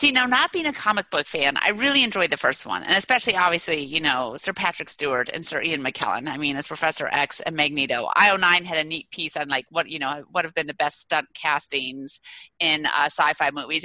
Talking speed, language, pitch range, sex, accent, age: 235 wpm, English, 155-205 Hz, female, American, 30-49